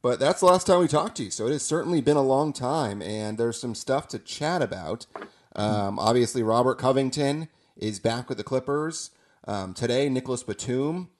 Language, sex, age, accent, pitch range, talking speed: English, male, 30-49, American, 110-145 Hz, 200 wpm